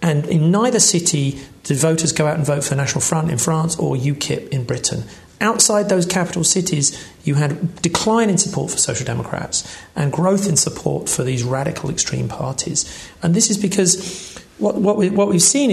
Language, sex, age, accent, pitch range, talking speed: English, male, 40-59, British, 150-185 Hz, 195 wpm